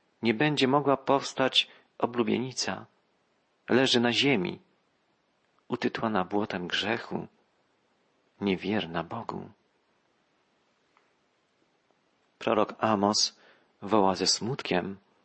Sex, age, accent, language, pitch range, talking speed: male, 40-59, native, Polish, 105-135 Hz, 70 wpm